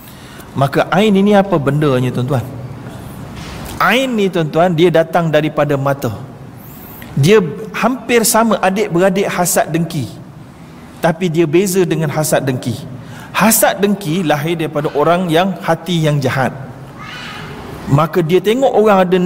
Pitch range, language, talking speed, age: 155-220 Hz, Malayalam, 125 wpm, 40-59